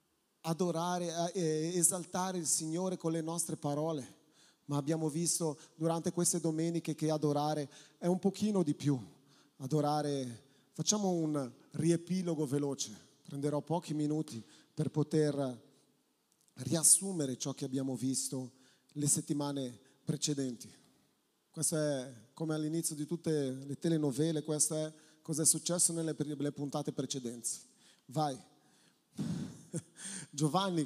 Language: Italian